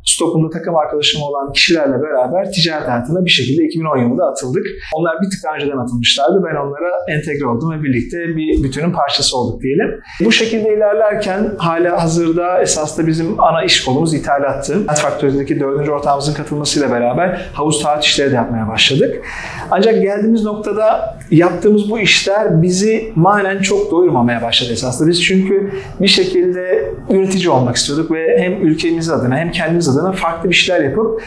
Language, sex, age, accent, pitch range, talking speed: Turkish, male, 40-59, native, 145-195 Hz, 150 wpm